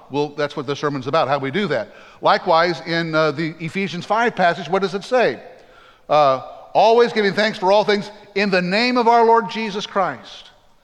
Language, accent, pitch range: English, American, 165-210 Hz